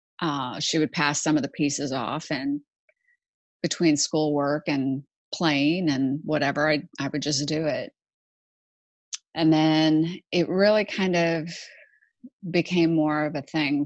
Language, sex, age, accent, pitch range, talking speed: English, female, 30-49, American, 150-190 Hz, 145 wpm